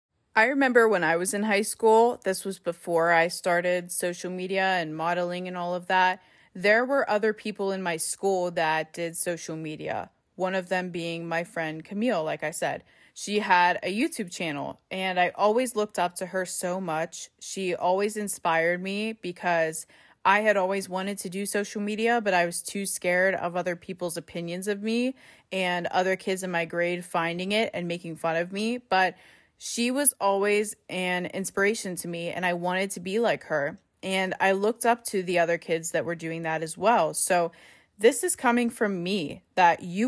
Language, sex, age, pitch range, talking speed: English, female, 20-39, 175-210 Hz, 195 wpm